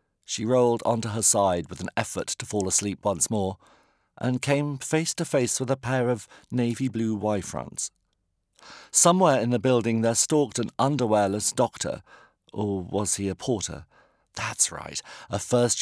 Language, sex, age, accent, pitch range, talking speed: English, male, 50-69, British, 100-130 Hz, 165 wpm